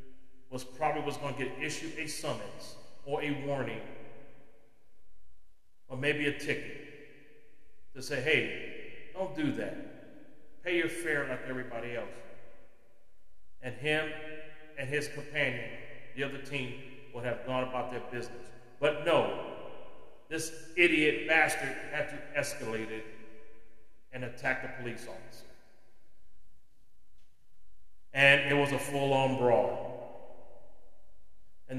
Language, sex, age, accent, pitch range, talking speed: English, male, 40-59, American, 130-155 Hz, 120 wpm